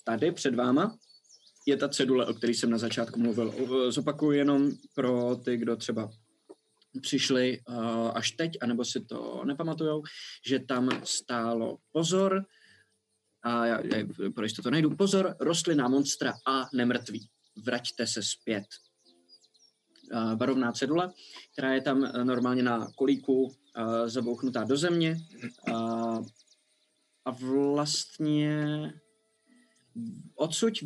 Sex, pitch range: male, 120-160 Hz